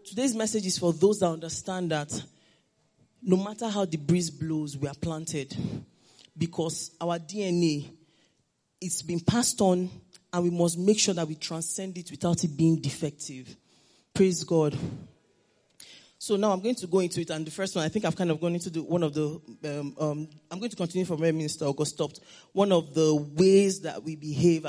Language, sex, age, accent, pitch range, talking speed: English, male, 30-49, Nigerian, 155-195 Hz, 195 wpm